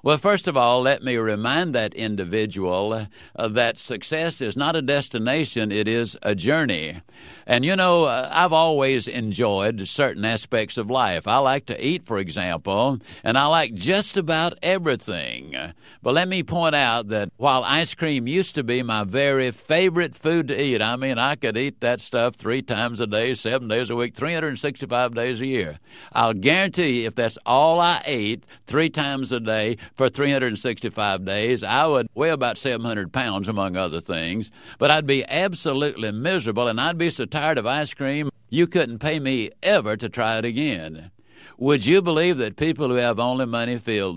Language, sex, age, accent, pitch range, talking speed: English, male, 60-79, American, 110-155 Hz, 185 wpm